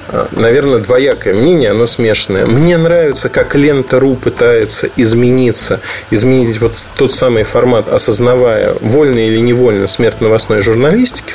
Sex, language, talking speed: male, Russian, 120 wpm